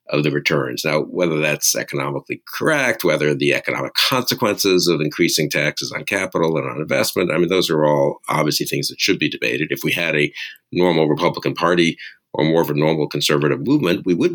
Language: English